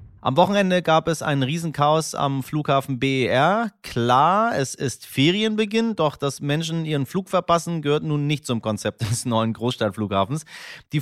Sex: male